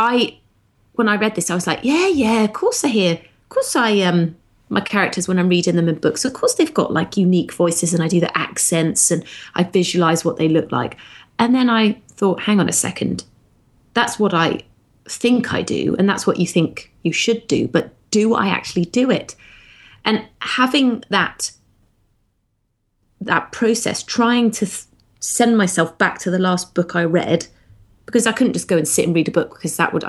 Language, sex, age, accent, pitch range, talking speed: English, female, 30-49, British, 165-230 Hz, 205 wpm